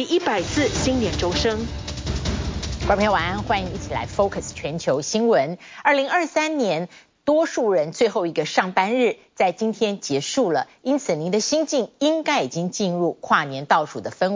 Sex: female